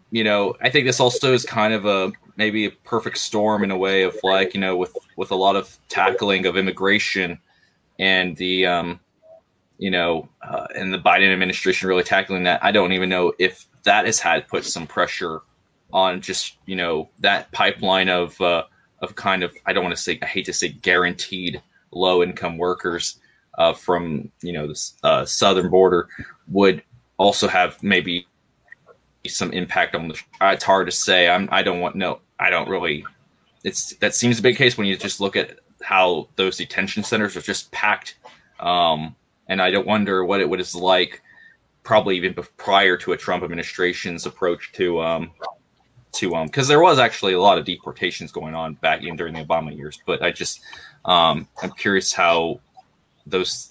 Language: English